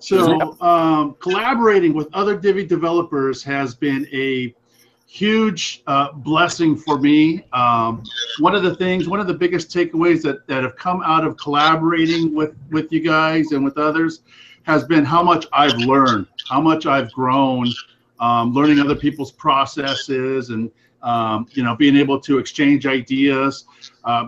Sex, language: male, English